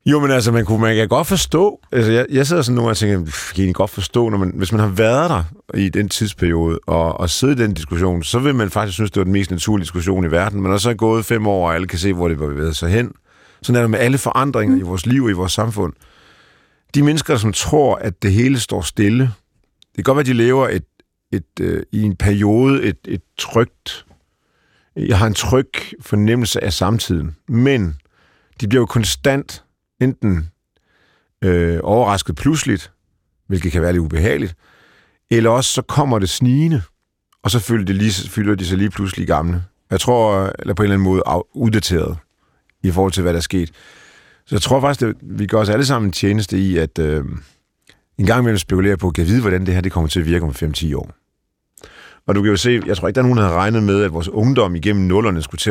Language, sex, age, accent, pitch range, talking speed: Danish, male, 50-69, native, 90-115 Hz, 225 wpm